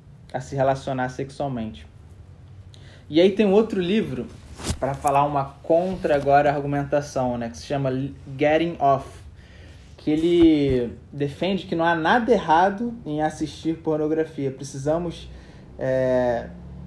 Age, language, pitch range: 20-39, Portuguese, 130-160 Hz